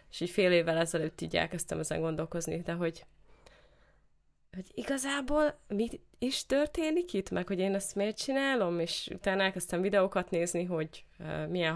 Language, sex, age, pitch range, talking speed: Hungarian, female, 20-39, 155-185 Hz, 155 wpm